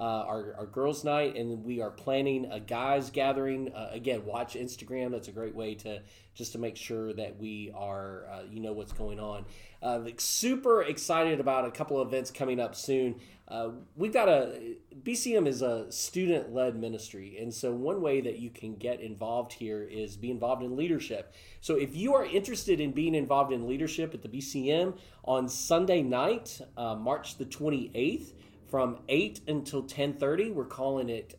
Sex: male